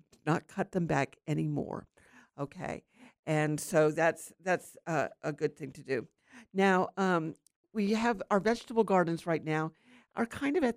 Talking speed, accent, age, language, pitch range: 160 wpm, American, 50-69, English, 160-200 Hz